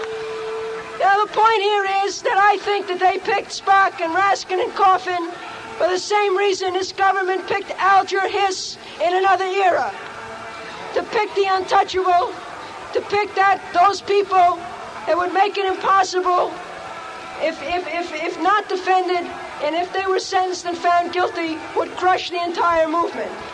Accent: American